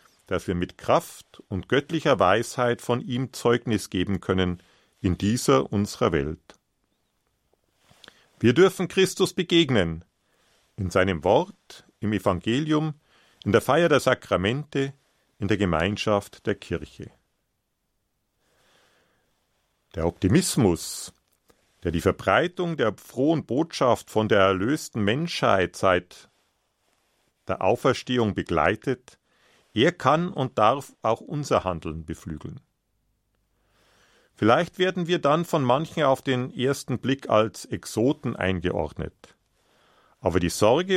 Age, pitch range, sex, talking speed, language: 50-69, 95-150 Hz, male, 110 wpm, German